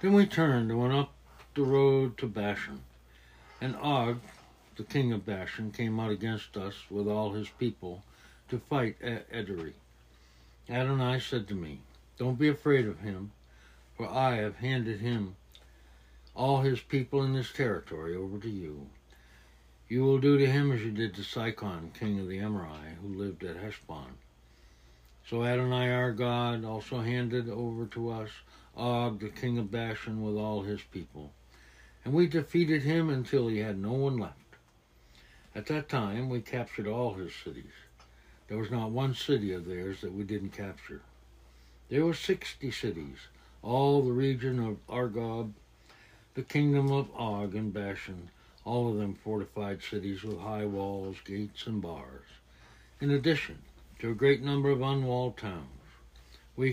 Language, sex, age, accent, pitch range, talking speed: English, male, 60-79, American, 85-125 Hz, 160 wpm